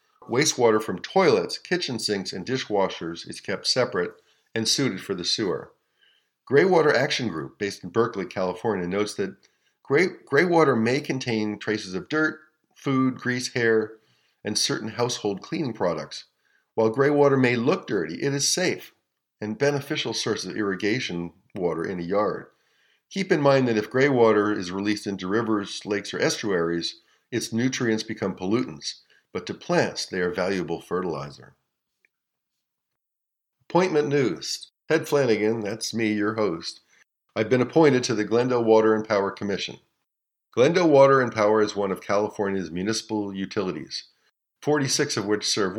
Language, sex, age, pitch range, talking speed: English, male, 50-69, 100-130 Hz, 145 wpm